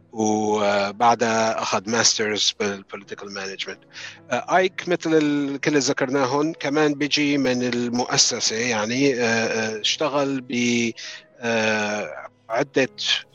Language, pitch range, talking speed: English, 110-135 Hz, 75 wpm